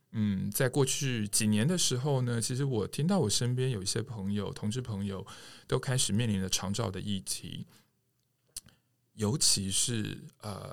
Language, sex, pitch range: Chinese, male, 105-130 Hz